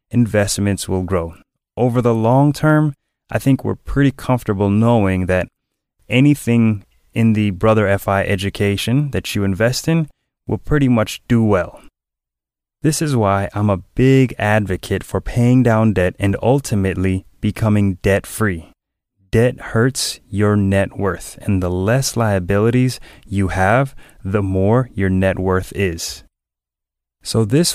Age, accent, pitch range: 20-39, American, 95-125 Hz